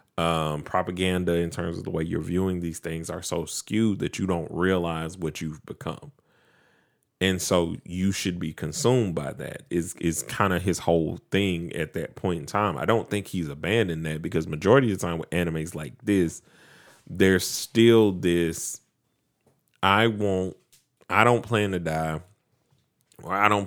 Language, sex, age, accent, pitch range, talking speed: English, male, 30-49, American, 80-100 Hz, 175 wpm